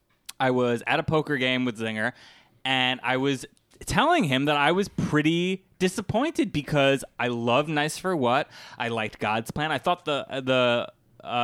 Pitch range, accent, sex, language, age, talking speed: 130-190 Hz, American, male, English, 20-39, 175 wpm